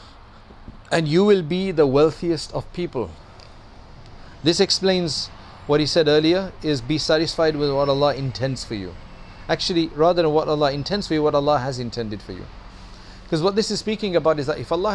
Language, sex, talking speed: English, male, 190 wpm